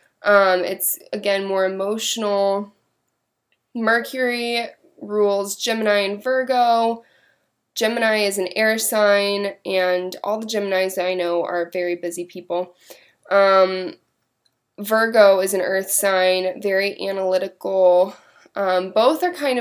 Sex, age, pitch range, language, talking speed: female, 20-39, 190-225 Hz, English, 115 wpm